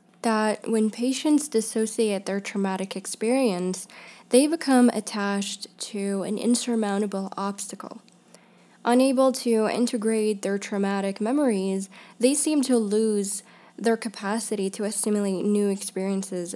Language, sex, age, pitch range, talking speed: English, female, 10-29, 185-225 Hz, 110 wpm